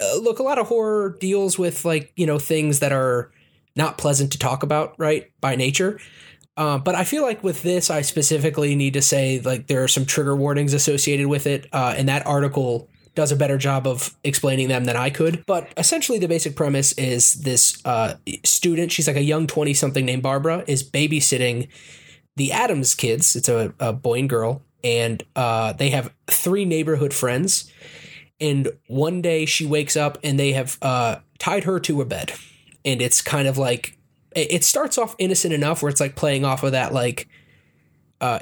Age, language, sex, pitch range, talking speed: 20-39, English, male, 135-165 Hz, 195 wpm